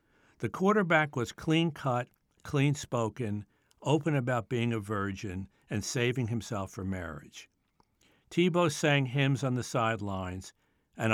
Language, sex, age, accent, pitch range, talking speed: English, male, 60-79, American, 105-140 Hz, 120 wpm